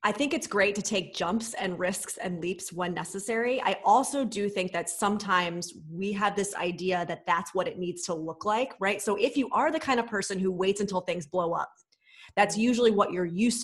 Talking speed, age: 225 wpm, 30-49